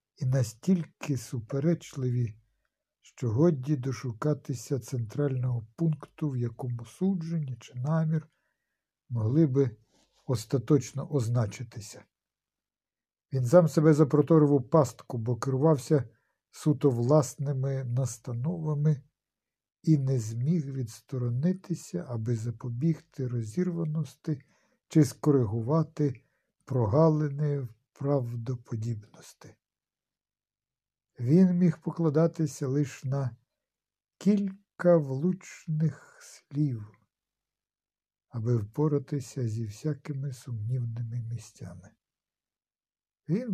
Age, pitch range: 60-79, 120-155 Hz